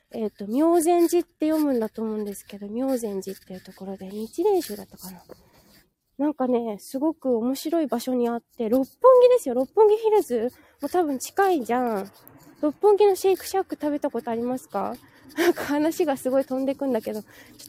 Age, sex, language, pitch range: 20-39, female, Japanese, 230-320 Hz